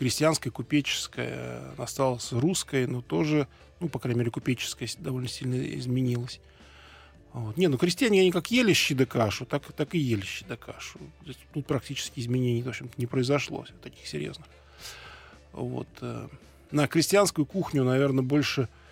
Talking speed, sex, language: 145 wpm, male, Russian